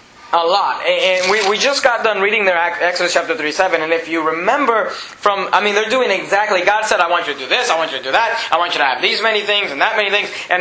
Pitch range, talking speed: 190-235 Hz, 275 wpm